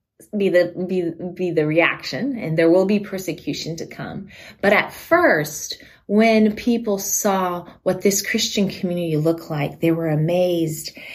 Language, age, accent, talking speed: English, 20-39, American, 150 wpm